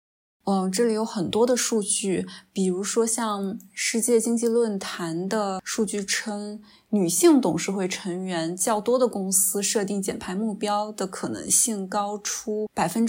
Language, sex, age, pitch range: Chinese, female, 20-39, 195-235 Hz